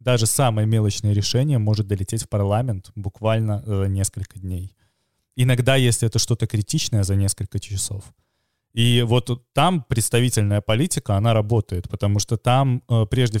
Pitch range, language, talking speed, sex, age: 105-125 Hz, Russian, 140 wpm, male, 20-39